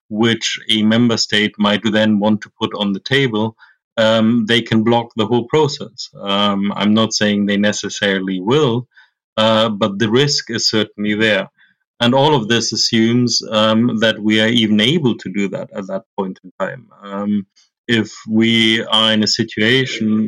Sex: male